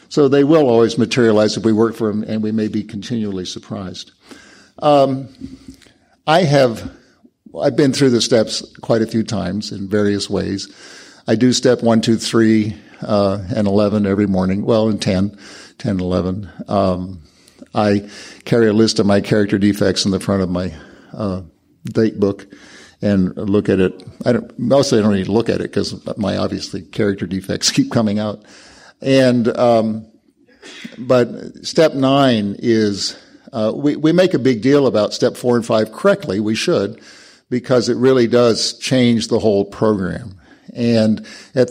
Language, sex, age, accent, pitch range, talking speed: English, male, 50-69, American, 100-120 Hz, 165 wpm